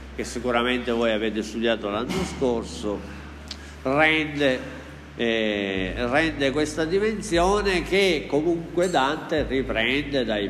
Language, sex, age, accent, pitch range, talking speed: Italian, male, 50-69, native, 105-145 Hz, 85 wpm